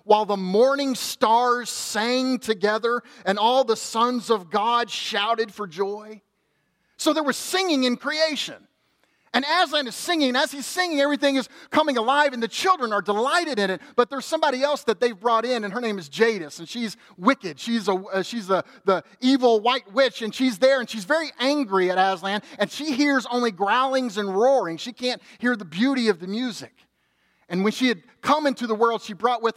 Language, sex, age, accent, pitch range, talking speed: English, male, 30-49, American, 200-260 Hz, 195 wpm